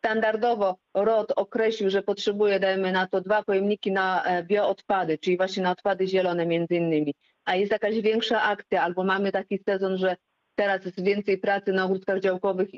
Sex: female